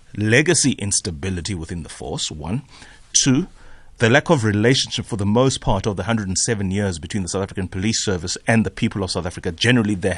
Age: 30-49